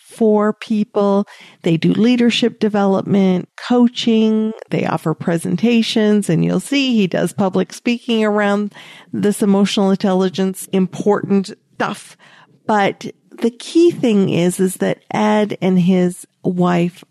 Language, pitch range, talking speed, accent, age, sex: English, 170-205 Hz, 120 wpm, American, 50-69, female